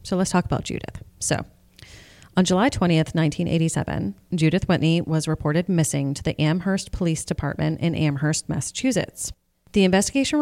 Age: 30-49